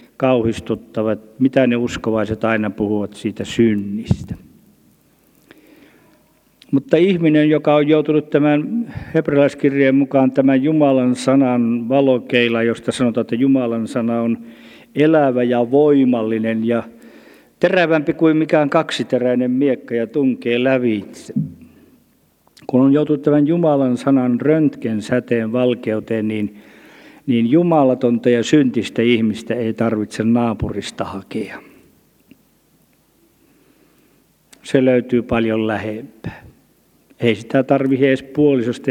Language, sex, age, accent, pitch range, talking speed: Finnish, male, 50-69, native, 115-135 Hz, 100 wpm